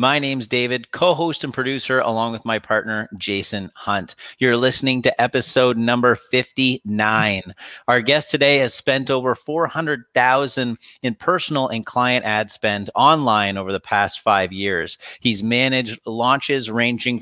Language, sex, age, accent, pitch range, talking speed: English, male, 30-49, American, 110-135 Hz, 145 wpm